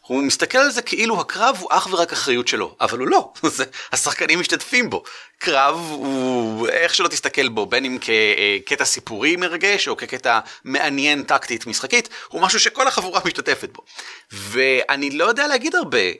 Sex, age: male, 30-49